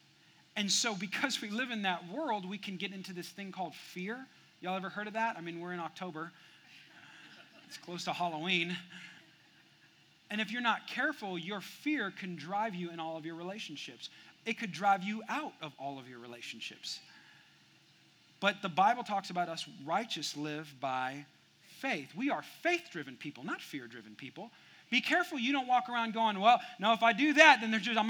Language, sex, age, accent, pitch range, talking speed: English, male, 40-59, American, 180-250 Hz, 190 wpm